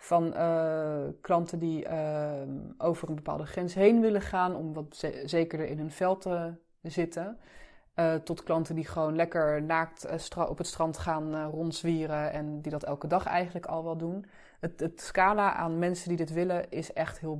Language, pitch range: Dutch, 155-175 Hz